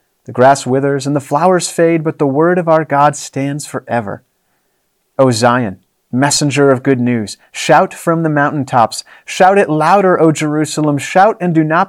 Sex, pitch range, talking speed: male, 140-180 Hz, 170 wpm